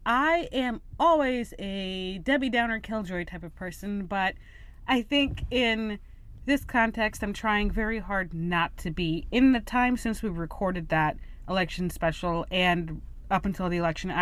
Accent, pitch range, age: American, 165-205 Hz, 30-49